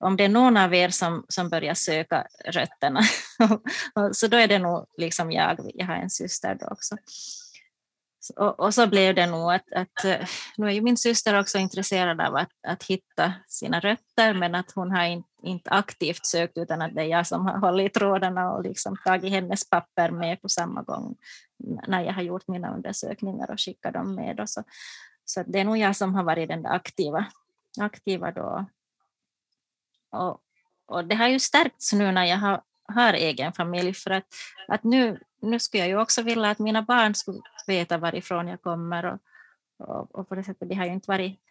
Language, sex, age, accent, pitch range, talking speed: Finnish, female, 20-39, Swedish, 180-215 Hz, 200 wpm